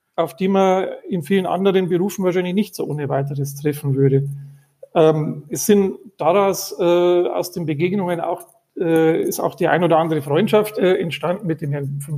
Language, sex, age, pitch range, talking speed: German, male, 40-59, 160-190 Hz, 180 wpm